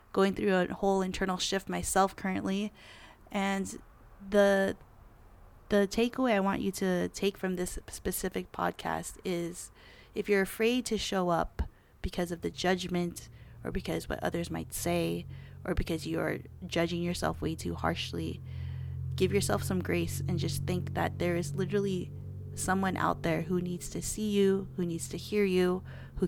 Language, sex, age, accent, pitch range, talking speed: English, female, 20-39, American, 160-195 Hz, 160 wpm